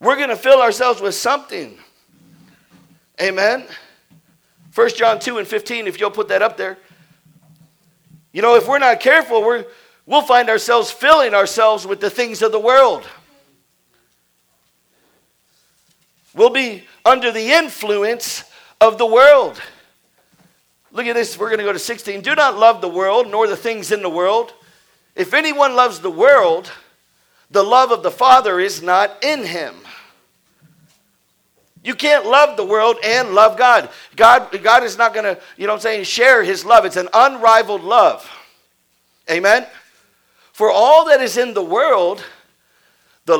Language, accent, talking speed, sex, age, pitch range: English, American, 155 wpm, male, 50-69, 200-265 Hz